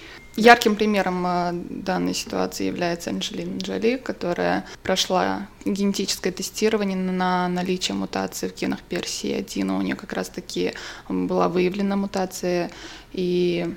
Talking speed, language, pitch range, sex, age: 115 wpm, Russian, 175-200 Hz, female, 20-39